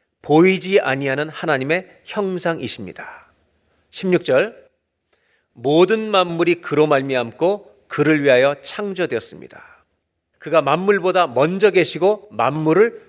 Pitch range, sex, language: 155-205 Hz, male, Korean